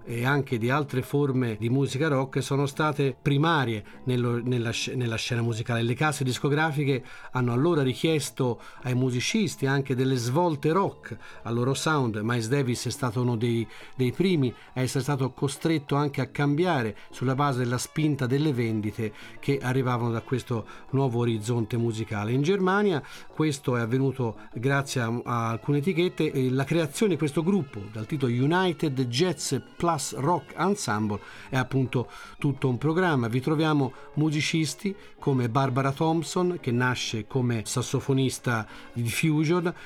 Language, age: Italian, 40-59